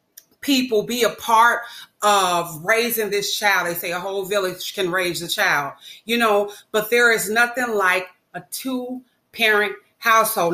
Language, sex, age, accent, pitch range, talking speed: English, female, 30-49, American, 195-255 Hz, 160 wpm